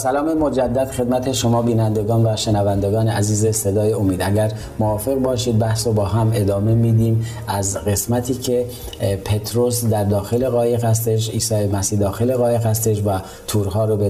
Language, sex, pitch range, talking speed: Persian, male, 105-120 Hz, 155 wpm